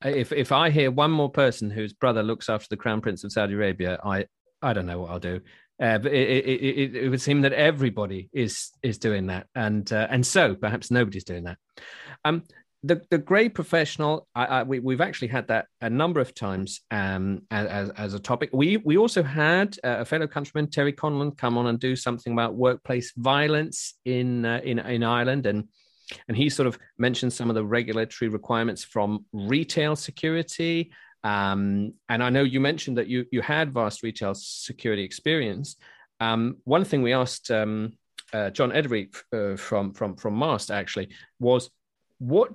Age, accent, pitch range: 40-59, British, 110-145 Hz